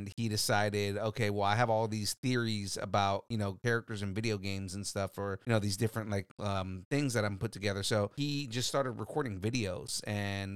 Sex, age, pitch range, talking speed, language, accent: male, 30-49, 100-120 Hz, 210 wpm, English, American